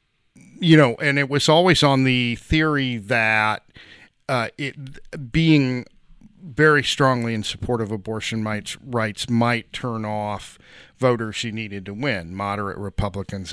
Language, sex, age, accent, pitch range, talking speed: English, male, 40-59, American, 105-130 Hz, 135 wpm